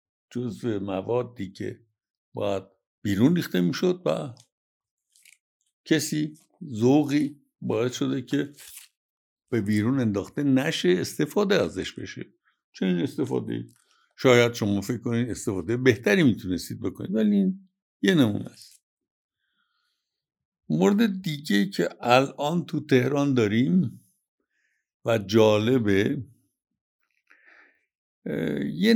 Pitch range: 110-160 Hz